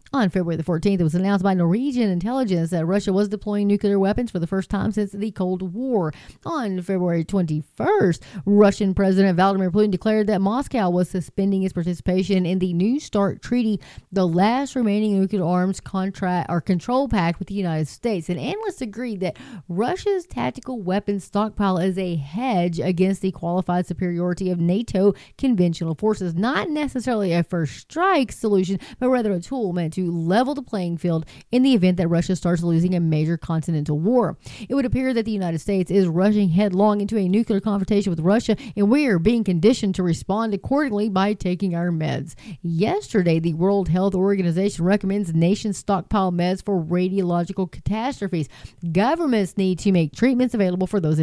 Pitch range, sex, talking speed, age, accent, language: 180-215 Hz, female, 175 wpm, 30-49, American, English